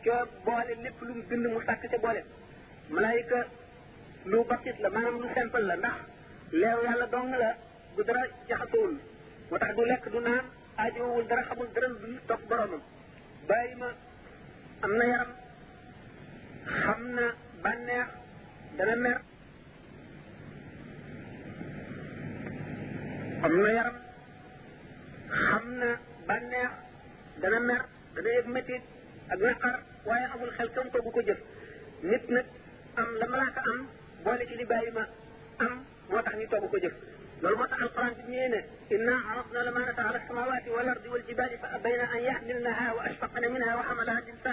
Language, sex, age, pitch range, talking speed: French, male, 50-69, 235-250 Hz, 55 wpm